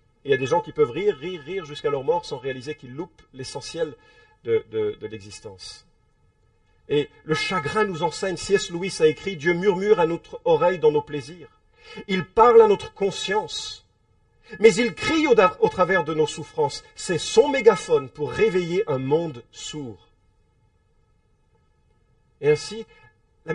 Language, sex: English, male